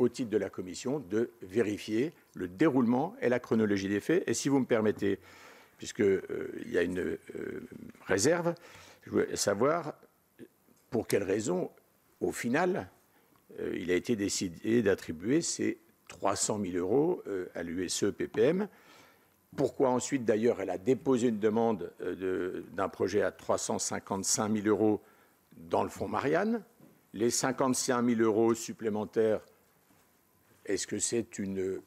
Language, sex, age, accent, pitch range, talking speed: French, male, 60-79, French, 100-125 Hz, 145 wpm